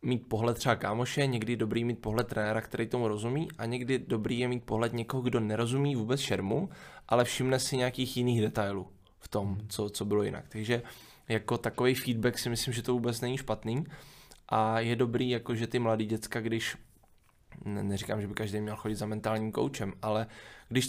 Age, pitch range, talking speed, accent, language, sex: 20-39, 105-125 Hz, 190 wpm, native, Czech, male